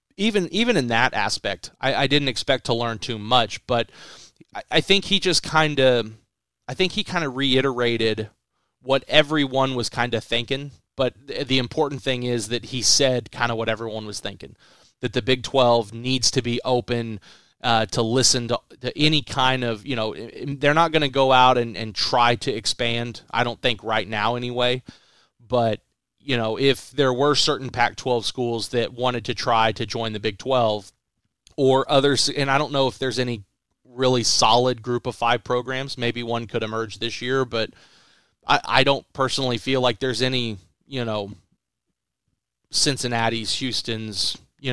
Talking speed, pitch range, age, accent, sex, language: 180 wpm, 115-130 Hz, 30-49, American, male, English